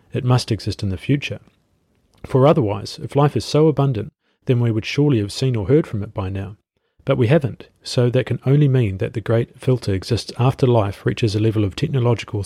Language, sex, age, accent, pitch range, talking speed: English, male, 40-59, Australian, 105-130 Hz, 215 wpm